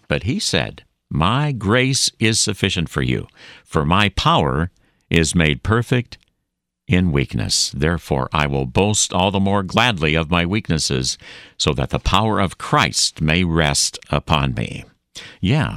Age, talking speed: 60-79, 150 wpm